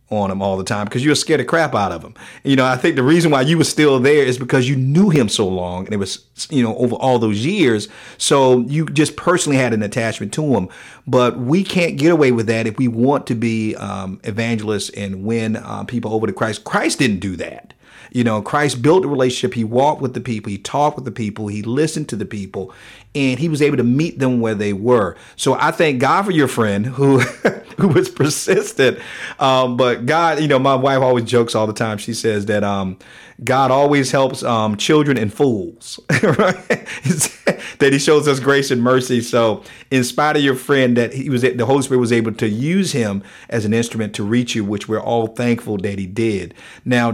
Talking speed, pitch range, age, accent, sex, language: 225 wpm, 110-140 Hz, 40-59, American, male, English